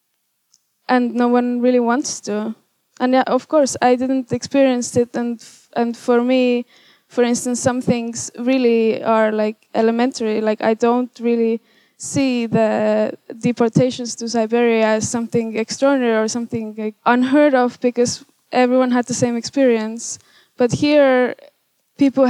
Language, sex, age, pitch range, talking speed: English, female, 10-29, 225-250 Hz, 145 wpm